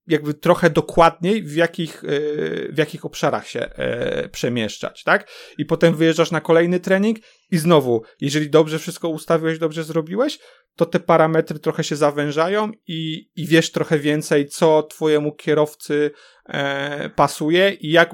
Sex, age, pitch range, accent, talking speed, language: male, 30-49, 130-160 Hz, native, 135 wpm, Polish